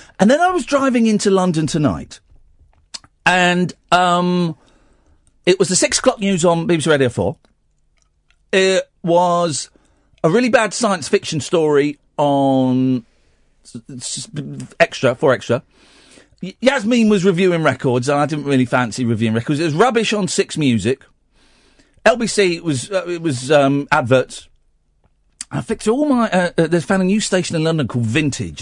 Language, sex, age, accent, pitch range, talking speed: English, male, 40-59, British, 110-190 Hz, 145 wpm